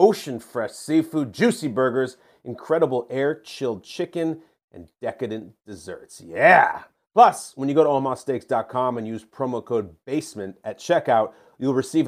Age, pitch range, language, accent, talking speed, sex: 40-59, 125-170 Hz, English, American, 130 wpm, male